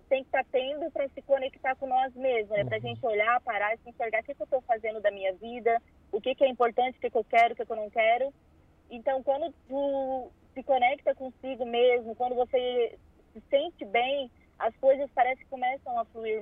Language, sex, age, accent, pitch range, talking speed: Portuguese, female, 20-39, Brazilian, 230-270 Hz, 225 wpm